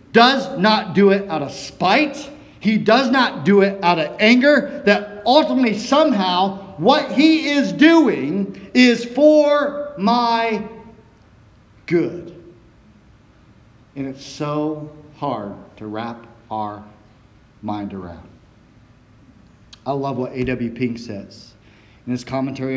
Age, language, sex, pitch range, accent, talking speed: 50-69, English, male, 125-195 Hz, American, 115 wpm